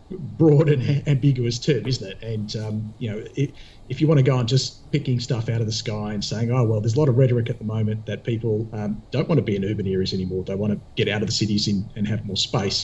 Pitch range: 105-130 Hz